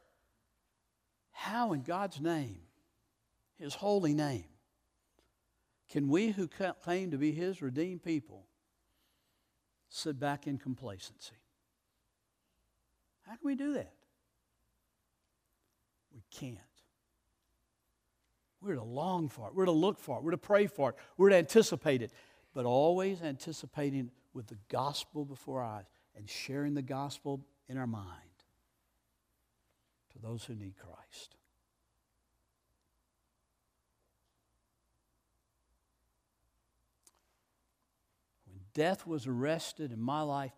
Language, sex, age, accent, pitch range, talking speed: English, male, 60-79, American, 110-155 Hz, 110 wpm